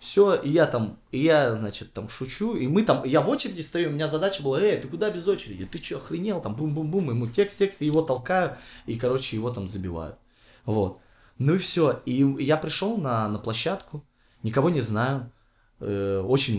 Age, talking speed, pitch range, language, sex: 20-39, 190 wpm, 105-160 Hz, Russian, male